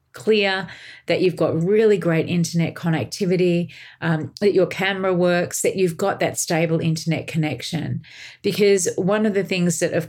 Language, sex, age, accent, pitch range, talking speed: English, female, 40-59, Australian, 160-195 Hz, 160 wpm